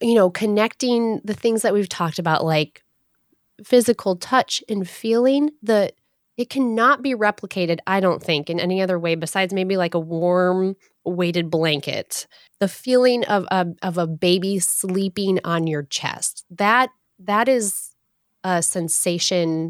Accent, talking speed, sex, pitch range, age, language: American, 150 wpm, female, 170-240 Hz, 20-39, English